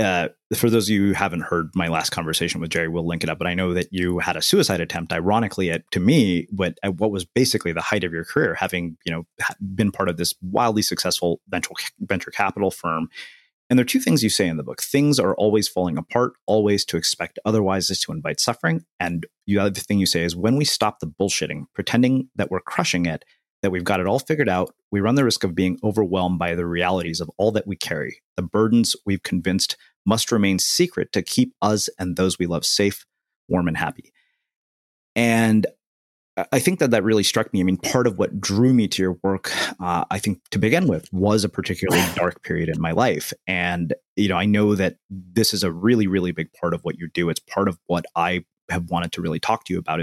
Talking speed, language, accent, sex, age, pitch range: 235 wpm, English, American, male, 30-49, 85-105 Hz